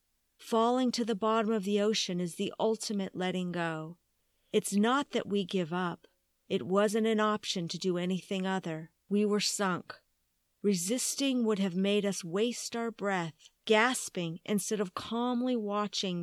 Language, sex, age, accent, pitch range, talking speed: English, female, 50-69, American, 175-220 Hz, 155 wpm